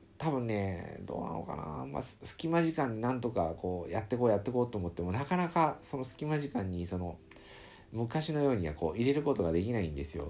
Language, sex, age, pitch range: Japanese, male, 50-69, 85-115 Hz